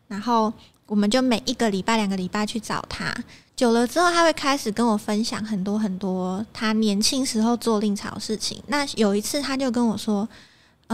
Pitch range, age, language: 210-260 Hz, 20-39, Chinese